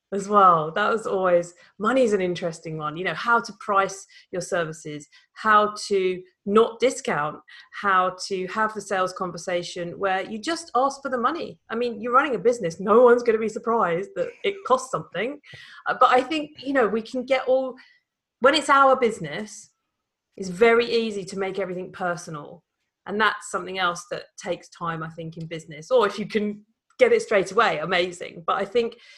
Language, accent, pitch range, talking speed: English, British, 185-255 Hz, 190 wpm